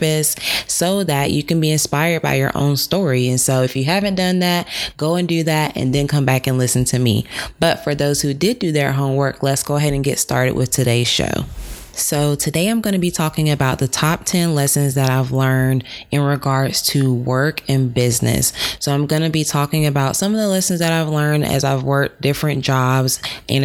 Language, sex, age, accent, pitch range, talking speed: English, female, 20-39, American, 130-155 Hz, 220 wpm